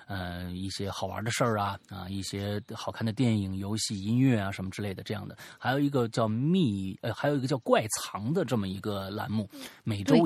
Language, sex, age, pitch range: Chinese, male, 30-49, 105-155 Hz